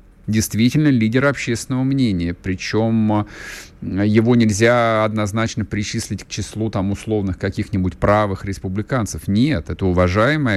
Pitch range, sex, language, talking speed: 95-120 Hz, male, Russian, 100 wpm